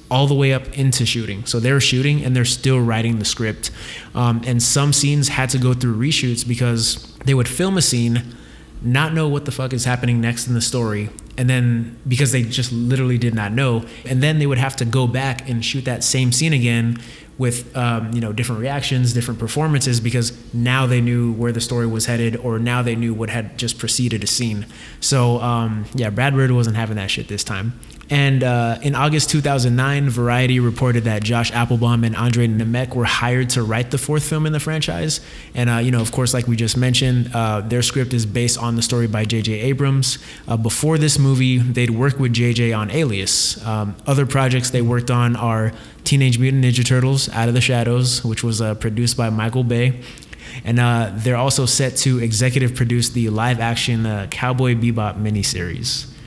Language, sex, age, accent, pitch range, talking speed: English, male, 20-39, American, 115-130 Hz, 205 wpm